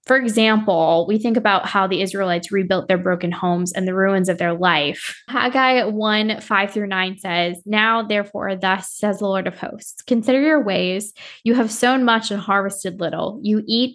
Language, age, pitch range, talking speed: English, 10-29, 180-215 Hz, 190 wpm